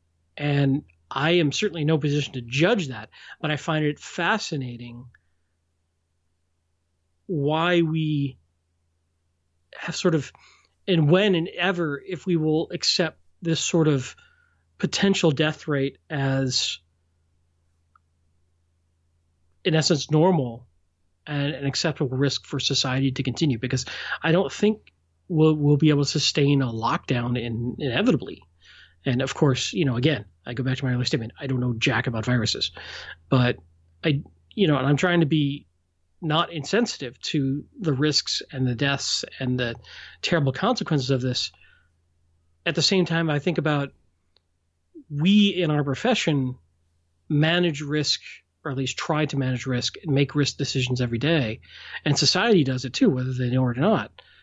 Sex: male